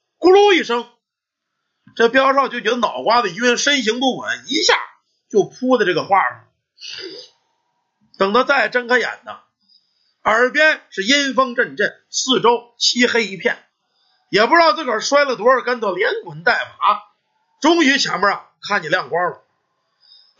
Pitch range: 240-390 Hz